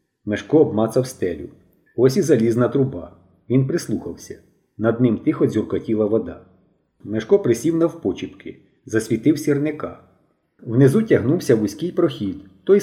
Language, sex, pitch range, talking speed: Ukrainian, male, 110-145 Hz, 110 wpm